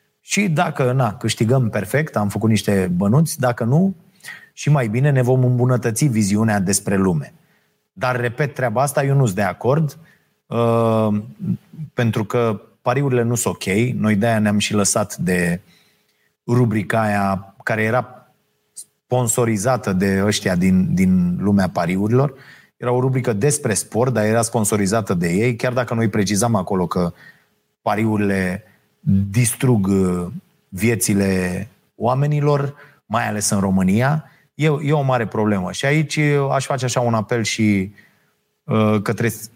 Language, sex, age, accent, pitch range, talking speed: Romanian, male, 30-49, native, 105-130 Hz, 135 wpm